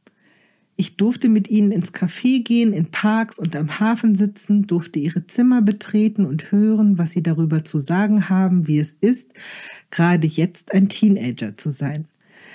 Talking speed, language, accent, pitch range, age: 165 wpm, German, German, 175-210 Hz, 40-59